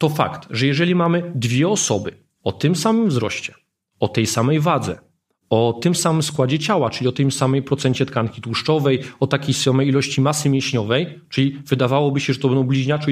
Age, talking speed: 40-59, 185 wpm